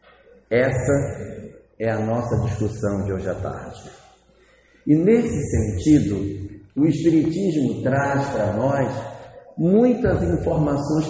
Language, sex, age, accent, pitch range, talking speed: Portuguese, male, 50-69, Brazilian, 120-160 Hz, 105 wpm